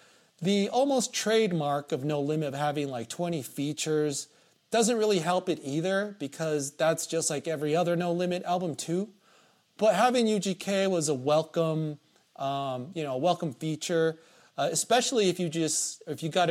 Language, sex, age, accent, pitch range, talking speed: English, male, 30-49, American, 145-200 Hz, 165 wpm